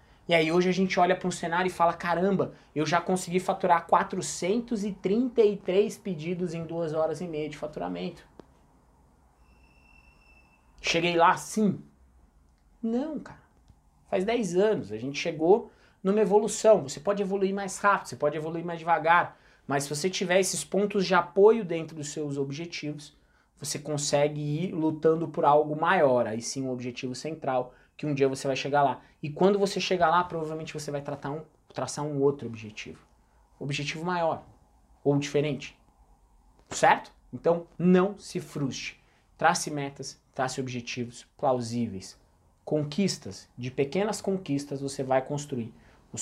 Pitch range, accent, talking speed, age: 125-180 Hz, Brazilian, 145 wpm, 20-39